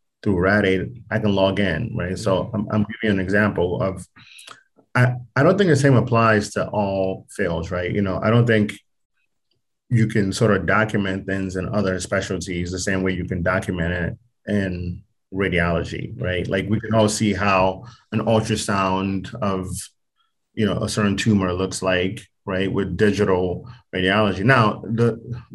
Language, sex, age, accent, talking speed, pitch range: English, male, 30-49, American, 170 wpm, 90-110 Hz